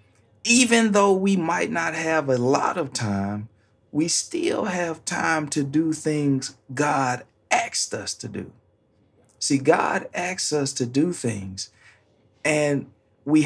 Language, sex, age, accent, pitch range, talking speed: English, male, 40-59, American, 110-155 Hz, 140 wpm